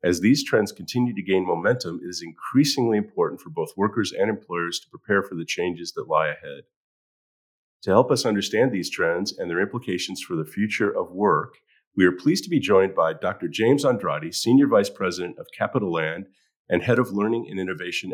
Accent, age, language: American, 40-59, English